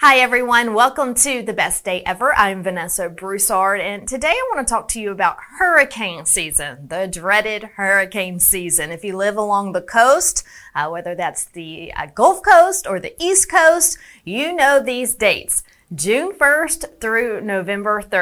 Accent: American